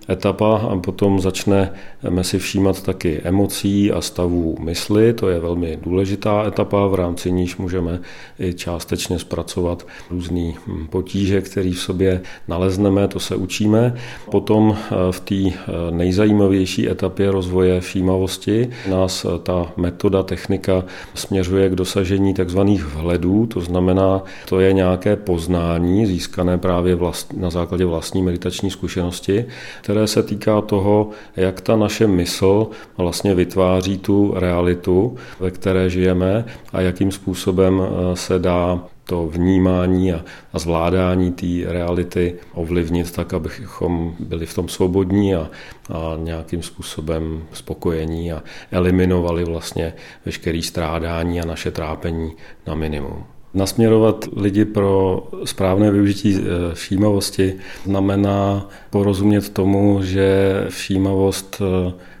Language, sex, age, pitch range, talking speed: Czech, male, 40-59, 90-100 Hz, 115 wpm